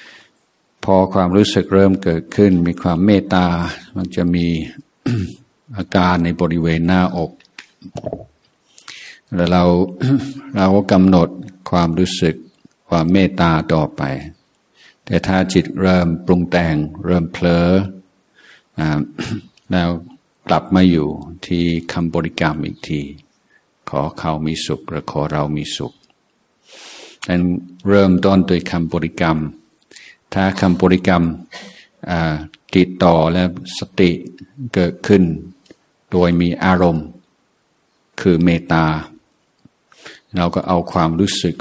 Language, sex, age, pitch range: Thai, male, 60-79, 80-95 Hz